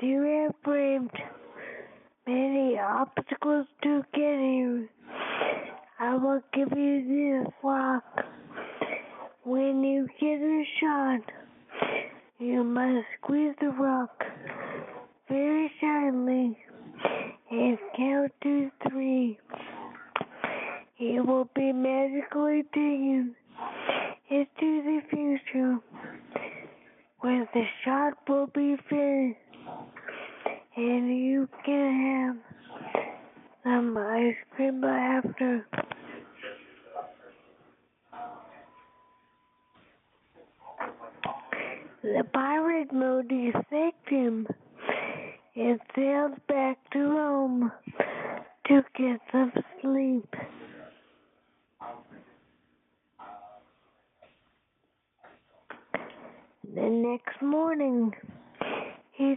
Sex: female